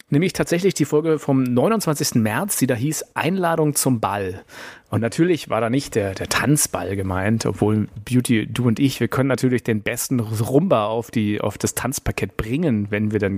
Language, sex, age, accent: German, male, 30-49, German